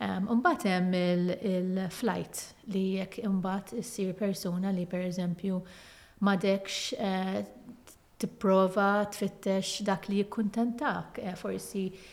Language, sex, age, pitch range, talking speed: English, female, 30-49, 185-220 Hz, 95 wpm